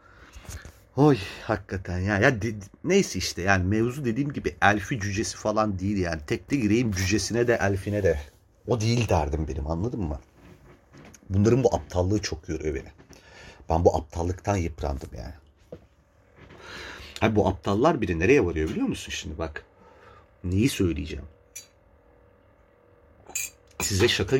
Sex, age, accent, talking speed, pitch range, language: male, 40-59, native, 130 wpm, 85-105 Hz, Turkish